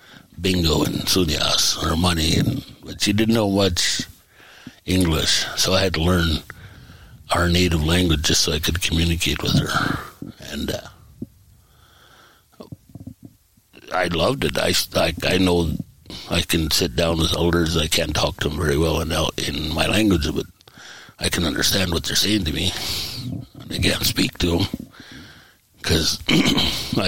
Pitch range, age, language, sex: 80-95 Hz, 60-79, English, male